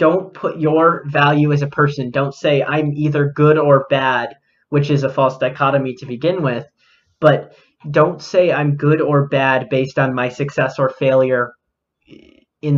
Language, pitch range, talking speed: English, 140-175 Hz, 170 wpm